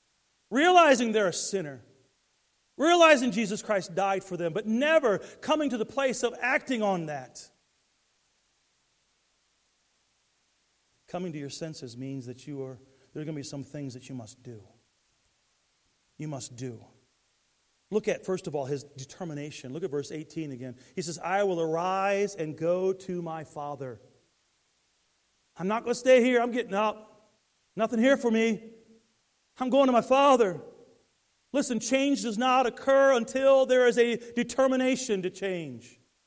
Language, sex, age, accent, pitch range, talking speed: English, male, 40-59, American, 150-235 Hz, 150 wpm